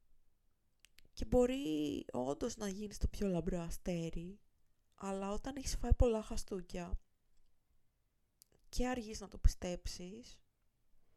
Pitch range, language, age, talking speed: 175-245 Hz, Greek, 20-39, 105 wpm